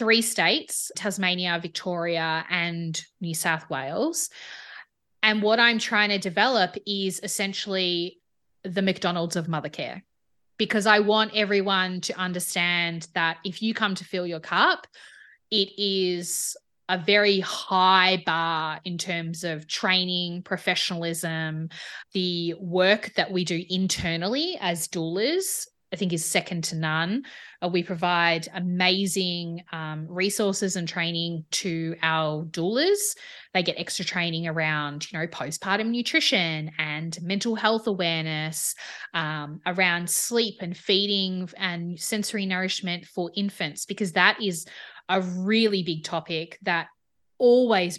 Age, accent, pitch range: 20-39, Australian, 170-200 Hz